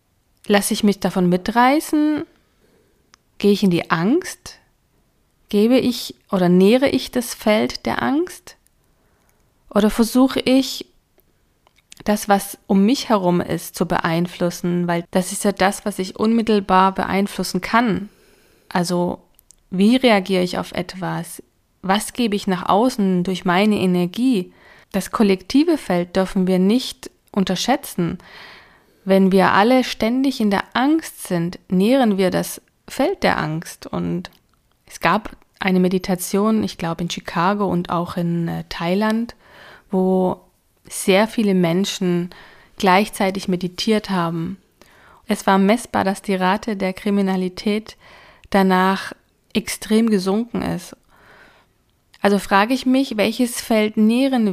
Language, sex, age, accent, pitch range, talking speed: German, female, 20-39, German, 185-220 Hz, 125 wpm